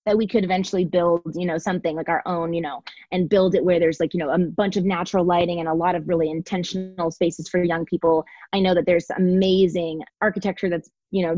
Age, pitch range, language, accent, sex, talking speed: 20-39, 165-190 Hz, English, American, female, 235 wpm